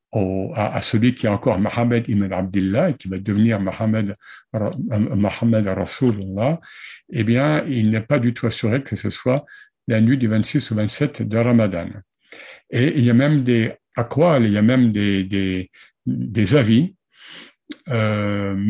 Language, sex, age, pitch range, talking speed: French, male, 60-79, 105-140 Hz, 170 wpm